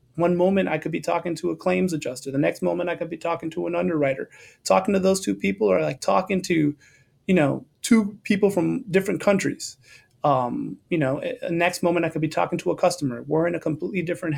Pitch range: 145-170 Hz